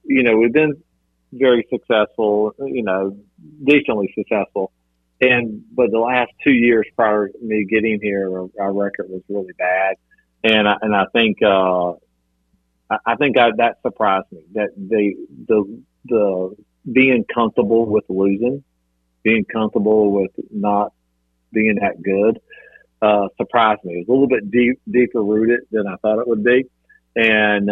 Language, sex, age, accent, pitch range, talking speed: English, male, 40-59, American, 95-110 Hz, 160 wpm